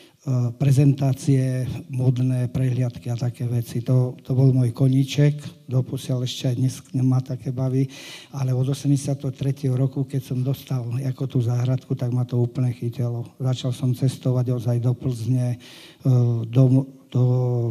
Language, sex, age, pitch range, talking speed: Slovak, male, 50-69, 125-135 Hz, 135 wpm